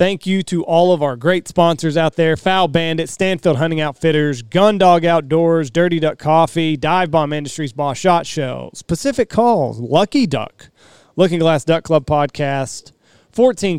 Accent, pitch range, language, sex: American, 130-175 Hz, English, male